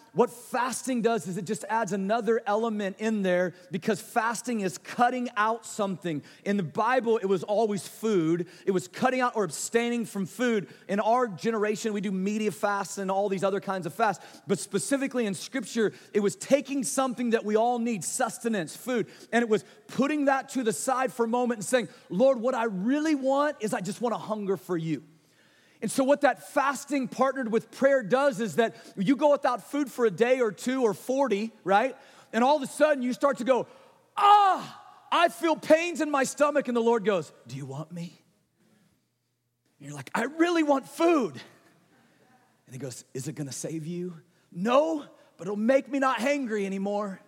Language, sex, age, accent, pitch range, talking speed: English, male, 30-49, American, 185-255 Hz, 200 wpm